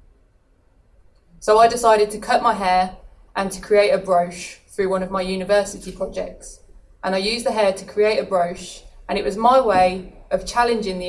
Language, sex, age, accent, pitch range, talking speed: English, female, 20-39, British, 170-205 Hz, 190 wpm